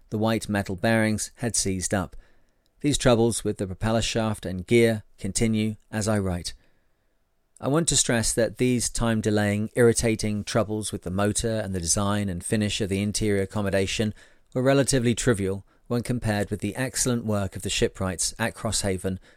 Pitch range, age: 100-120 Hz, 40-59